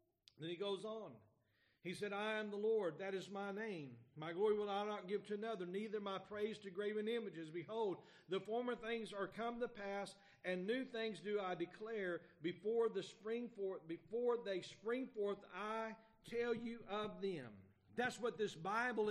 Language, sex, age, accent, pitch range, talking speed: English, male, 40-59, American, 195-230 Hz, 175 wpm